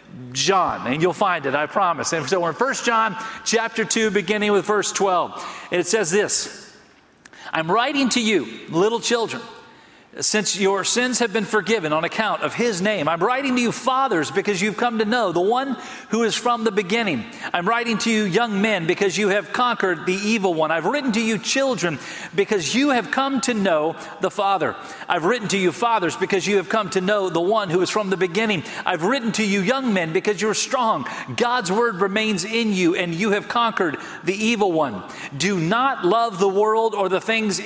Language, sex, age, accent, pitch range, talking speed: English, male, 40-59, American, 180-230 Hz, 205 wpm